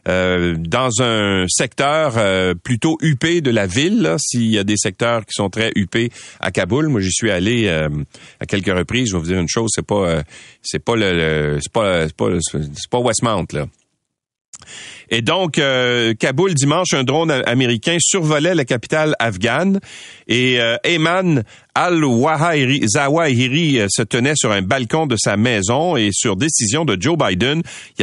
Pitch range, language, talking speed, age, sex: 110-160 Hz, French, 170 wpm, 40-59, male